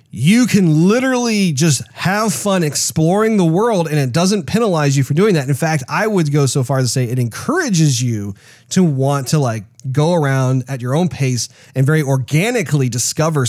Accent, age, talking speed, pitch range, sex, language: American, 30-49, 195 wpm, 125-165 Hz, male, English